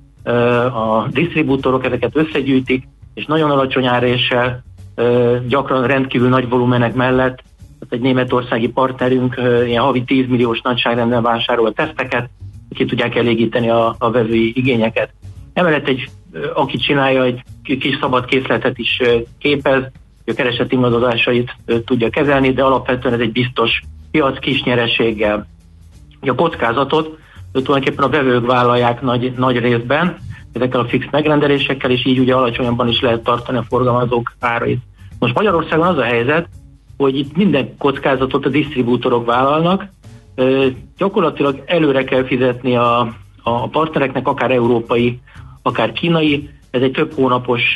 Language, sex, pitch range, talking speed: Hungarian, male, 120-135 Hz, 130 wpm